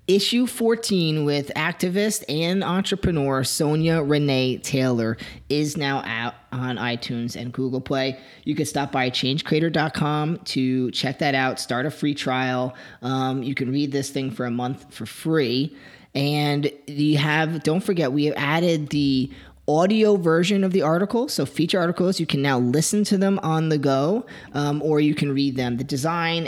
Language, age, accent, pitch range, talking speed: English, 30-49, American, 130-165 Hz, 170 wpm